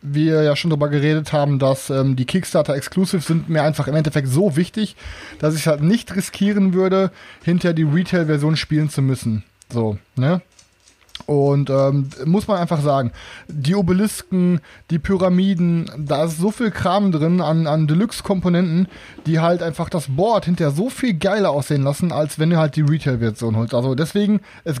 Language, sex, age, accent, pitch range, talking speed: German, male, 20-39, German, 140-190 Hz, 175 wpm